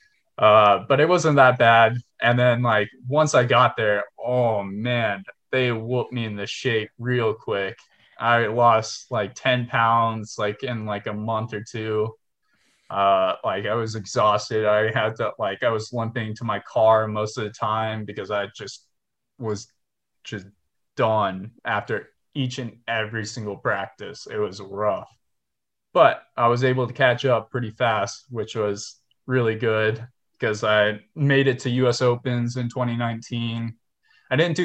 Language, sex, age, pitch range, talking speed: English, male, 20-39, 110-130 Hz, 160 wpm